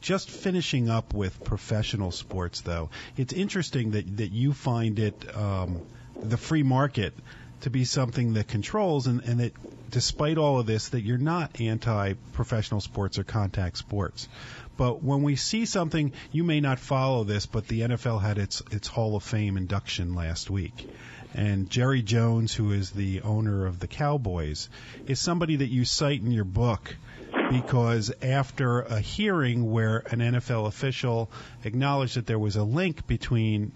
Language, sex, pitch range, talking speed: English, male, 105-130 Hz, 165 wpm